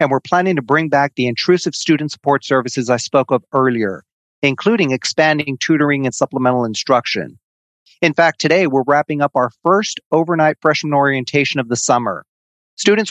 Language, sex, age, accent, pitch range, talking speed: English, male, 40-59, American, 125-150 Hz, 165 wpm